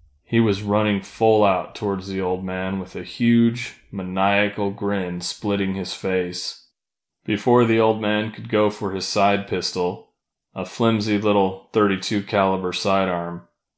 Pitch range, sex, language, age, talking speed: 90-105 Hz, male, English, 20-39, 145 wpm